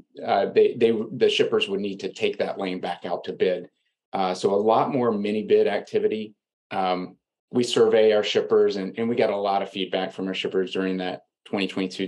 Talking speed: 210 wpm